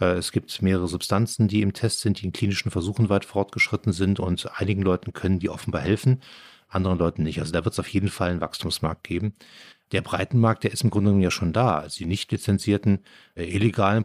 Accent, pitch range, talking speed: German, 90-105 Hz, 215 wpm